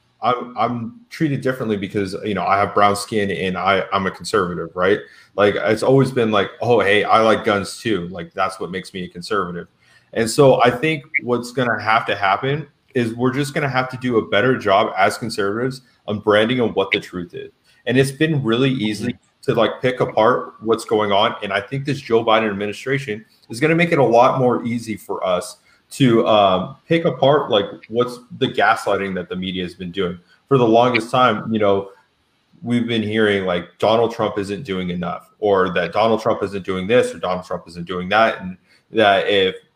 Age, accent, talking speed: 30-49, American, 210 wpm